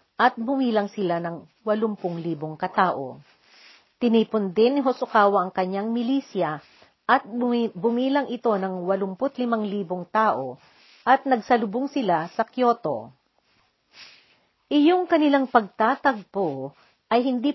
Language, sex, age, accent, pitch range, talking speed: Filipino, female, 50-69, native, 185-245 Hz, 105 wpm